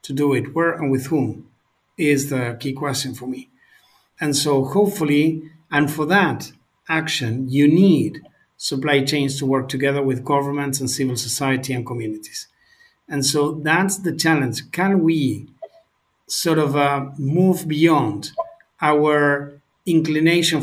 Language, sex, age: English, male, 50-69